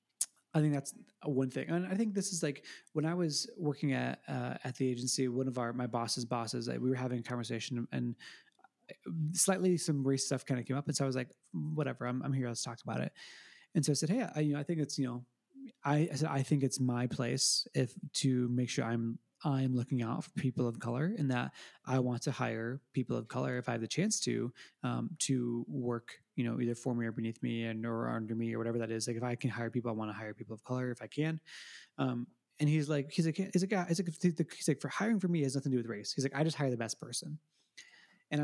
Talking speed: 260 wpm